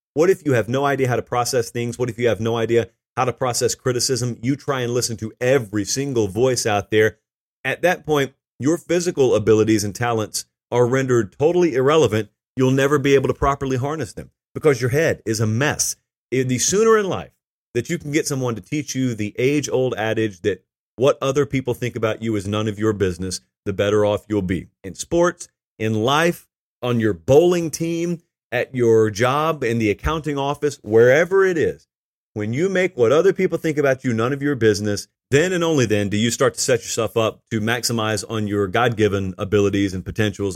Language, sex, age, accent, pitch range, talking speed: English, male, 40-59, American, 110-140 Hz, 205 wpm